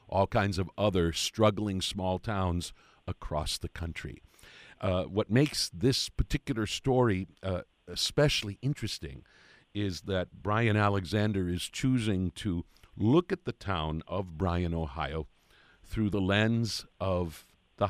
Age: 50-69